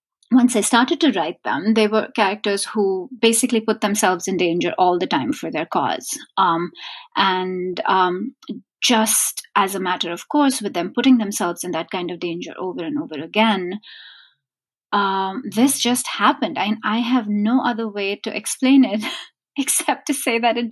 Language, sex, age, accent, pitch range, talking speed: English, female, 30-49, Indian, 190-245 Hz, 175 wpm